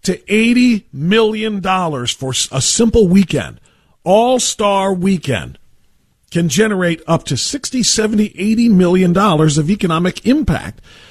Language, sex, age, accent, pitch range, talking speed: English, male, 50-69, American, 140-215 Hz, 110 wpm